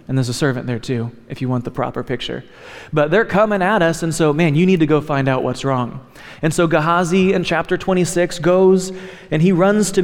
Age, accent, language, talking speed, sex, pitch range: 30-49, American, English, 235 wpm, male, 130-165 Hz